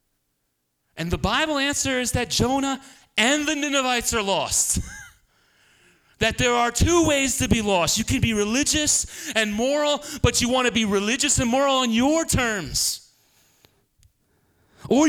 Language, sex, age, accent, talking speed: English, male, 30-49, American, 150 wpm